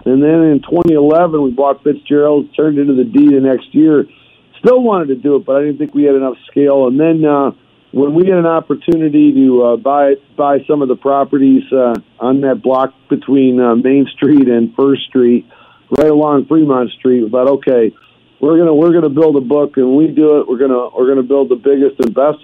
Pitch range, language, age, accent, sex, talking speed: 130-150 Hz, English, 50-69, American, male, 220 wpm